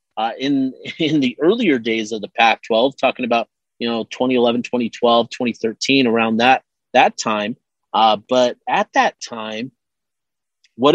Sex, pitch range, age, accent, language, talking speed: male, 115-140 Hz, 30-49, American, English, 140 wpm